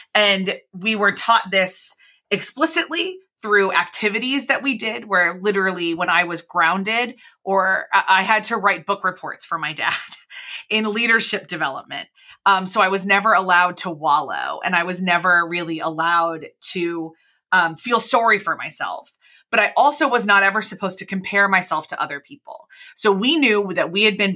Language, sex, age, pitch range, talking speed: English, female, 30-49, 175-225 Hz, 170 wpm